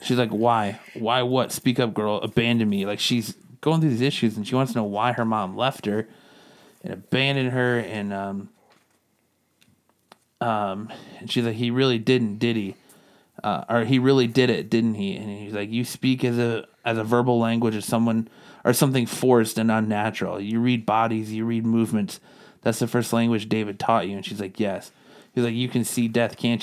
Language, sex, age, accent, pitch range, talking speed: English, male, 30-49, American, 110-125 Hz, 205 wpm